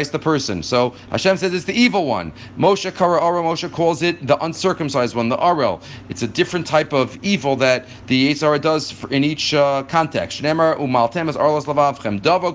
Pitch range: 135-175 Hz